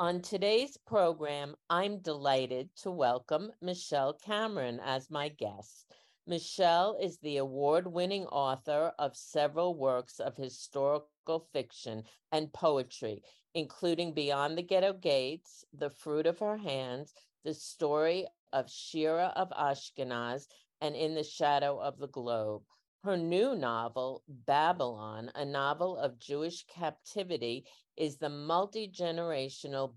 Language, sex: English, female